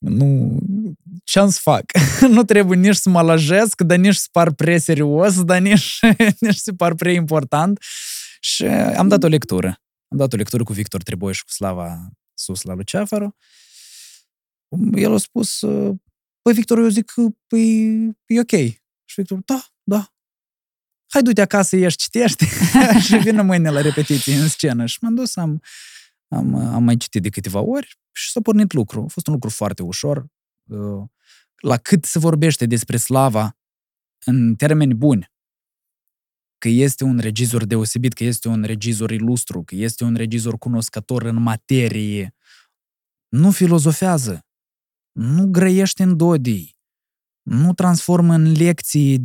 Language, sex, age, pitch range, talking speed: Romanian, male, 20-39, 120-195 Hz, 145 wpm